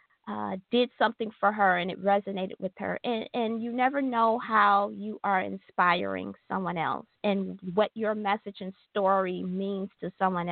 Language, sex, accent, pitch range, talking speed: English, female, American, 190-225 Hz, 170 wpm